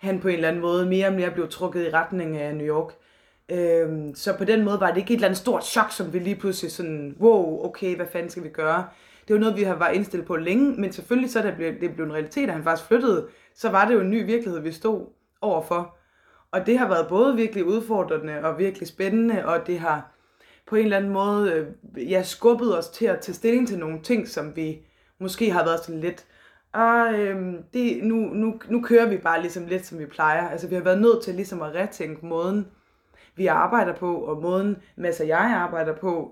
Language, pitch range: Danish, 160-200 Hz